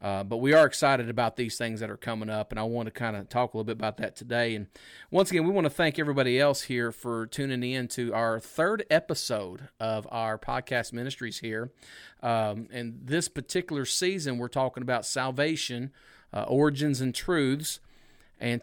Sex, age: male, 40-59